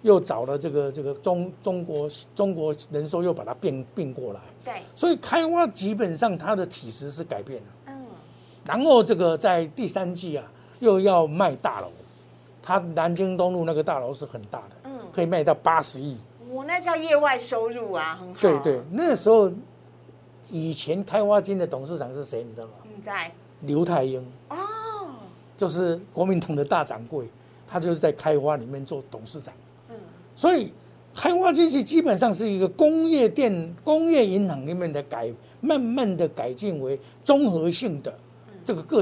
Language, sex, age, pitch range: Chinese, male, 50-69, 150-225 Hz